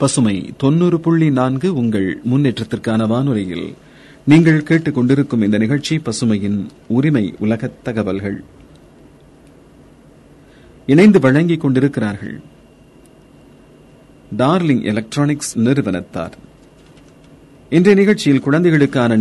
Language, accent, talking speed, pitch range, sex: Tamil, native, 55 wpm, 105-145 Hz, male